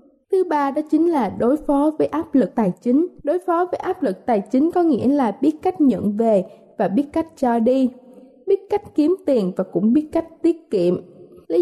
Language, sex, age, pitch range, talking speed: Vietnamese, female, 20-39, 230-300 Hz, 215 wpm